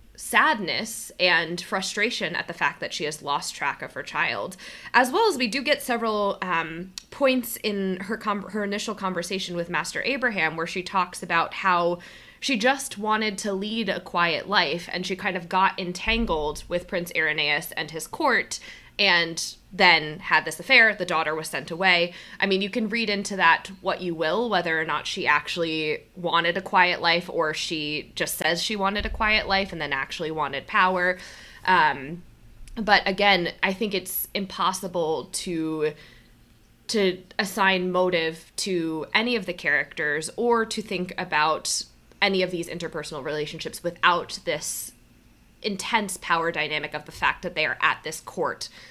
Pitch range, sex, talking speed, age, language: 165-205 Hz, female, 170 wpm, 20-39, English